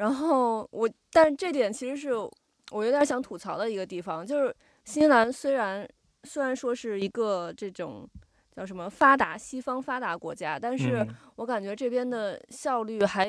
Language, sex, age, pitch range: Chinese, female, 20-39, 195-255 Hz